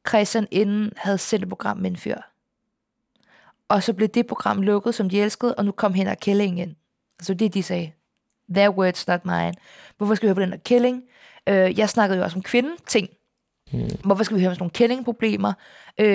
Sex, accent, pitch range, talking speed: female, native, 190-240 Hz, 195 wpm